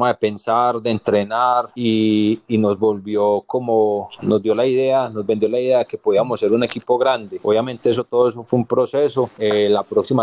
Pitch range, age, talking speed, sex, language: 105-125 Hz, 30-49, 200 wpm, male, Spanish